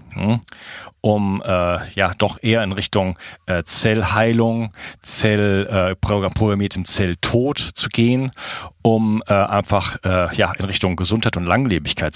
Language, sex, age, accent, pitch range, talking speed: German, male, 40-59, German, 95-110 Hz, 120 wpm